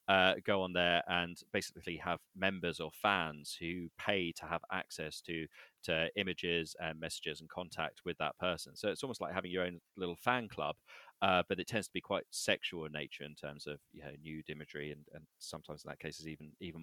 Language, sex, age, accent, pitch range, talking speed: English, male, 30-49, British, 80-95 Hz, 220 wpm